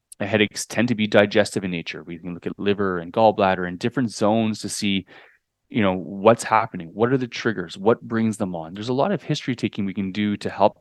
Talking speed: 240 wpm